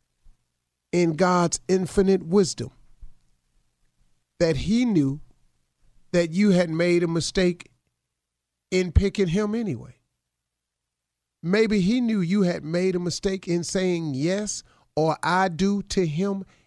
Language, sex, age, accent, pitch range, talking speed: English, male, 40-59, American, 120-195 Hz, 120 wpm